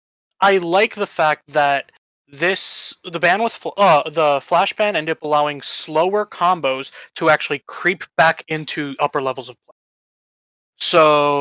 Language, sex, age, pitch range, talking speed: English, male, 20-39, 140-175 Hz, 145 wpm